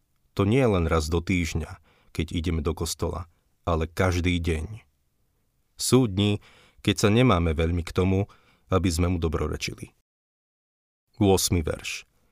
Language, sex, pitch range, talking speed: Slovak, male, 85-100 Hz, 125 wpm